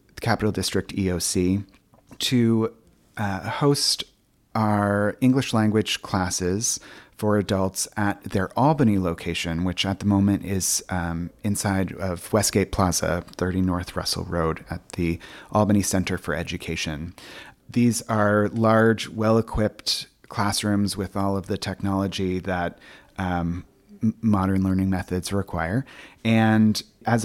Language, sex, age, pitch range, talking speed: English, male, 30-49, 90-110 Hz, 120 wpm